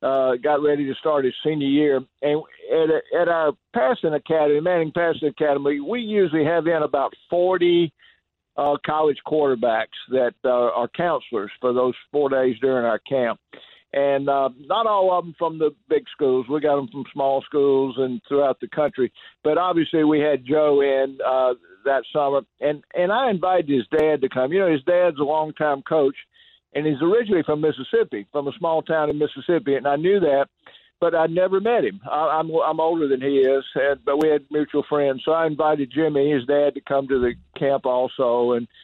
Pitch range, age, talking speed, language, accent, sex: 135-160 Hz, 50-69, 195 wpm, English, American, male